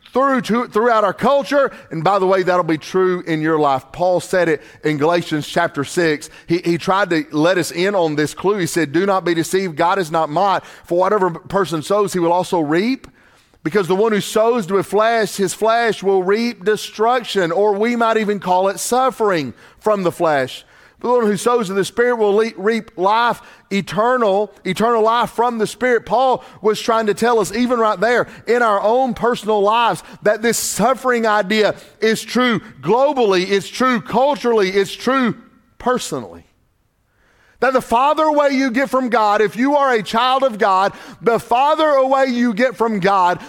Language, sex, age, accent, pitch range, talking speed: English, male, 40-59, American, 185-245 Hz, 190 wpm